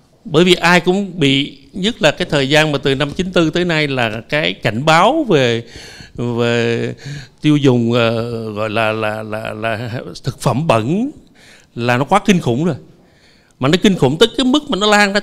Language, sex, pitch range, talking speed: Vietnamese, male, 115-175 Hz, 200 wpm